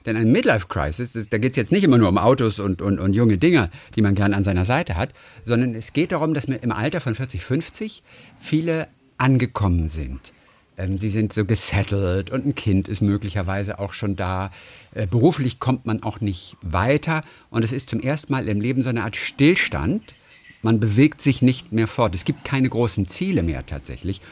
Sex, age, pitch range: male, 50-69, 95-140 Hz